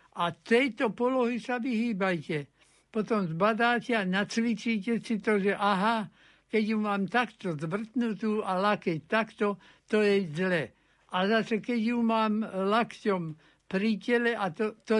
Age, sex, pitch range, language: 60-79, male, 185-225 Hz, Slovak